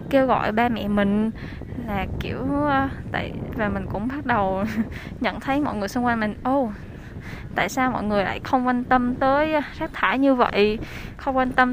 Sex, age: female, 10-29